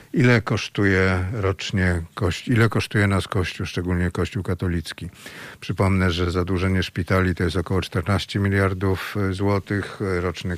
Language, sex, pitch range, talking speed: Polish, male, 90-100 Hz, 120 wpm